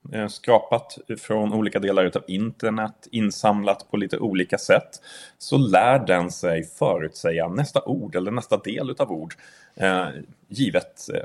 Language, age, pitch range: English, 30-49, 100-130 Hz